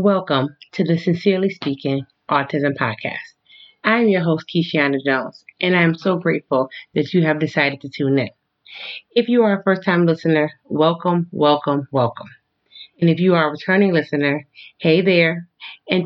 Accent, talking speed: American, 160 wpm